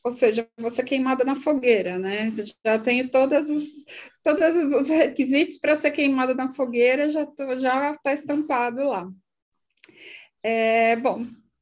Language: Portuguese